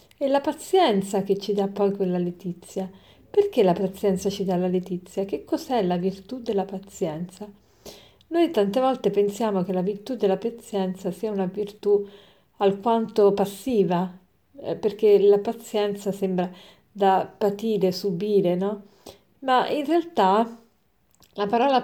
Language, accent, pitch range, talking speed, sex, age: Italian, native, 190-235 Hz, 135 wpm, female, 50-69